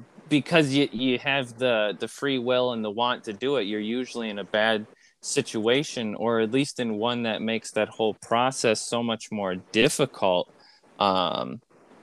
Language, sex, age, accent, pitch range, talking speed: English, male, 20-39, American, 115-140 Hz, 175 wpm